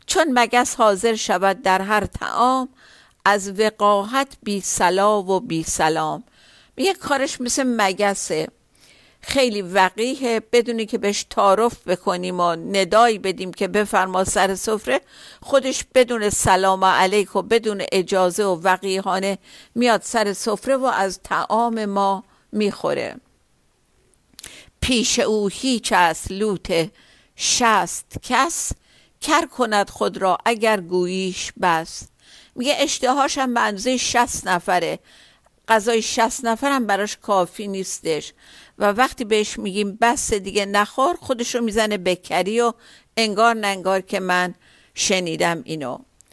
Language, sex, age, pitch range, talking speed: Persian, female, 50-69, 190-240 Hz, 120 wpm